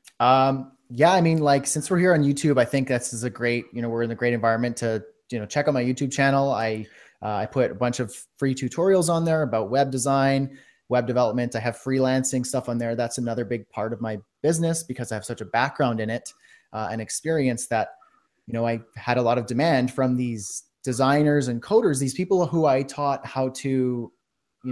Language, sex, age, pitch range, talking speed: English, male, 30-49, 115-140 Hz, 225 wpm